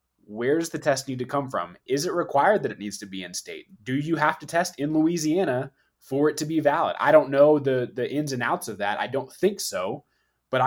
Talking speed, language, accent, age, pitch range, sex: 245 wpm, English, American, 20-39, 105-145 Hz, male